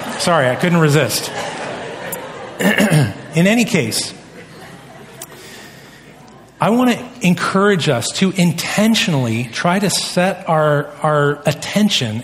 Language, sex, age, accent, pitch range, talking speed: English, male, 40-59, American, 125-160 Hz, 100 wpm